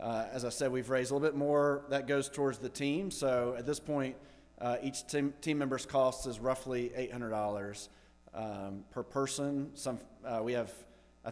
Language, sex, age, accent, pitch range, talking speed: English, male, 40-59, American, 110-135 Hz, 190 wpm